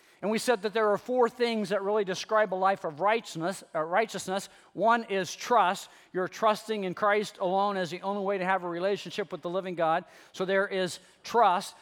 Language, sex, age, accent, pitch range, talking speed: English, male, 40-59, American, 170-205 Hz, 210 wpm